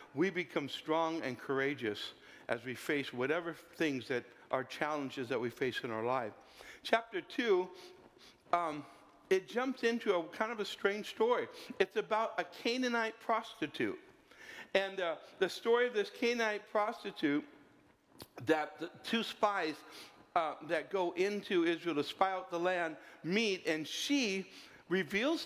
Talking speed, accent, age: 145 wpm, American, 60-79